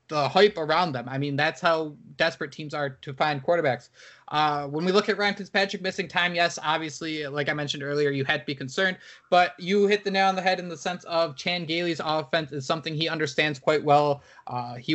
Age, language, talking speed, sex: 20-39, English, 230 wpm, male